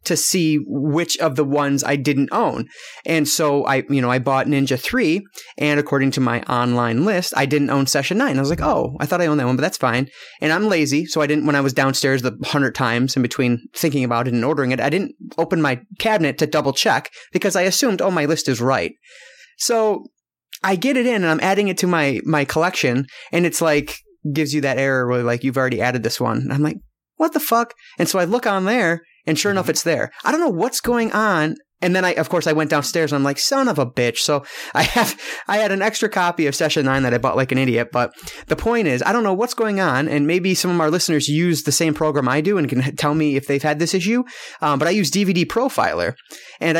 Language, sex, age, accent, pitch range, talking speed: English, male, 30-49, American, 140-180 Hz, 255 wpm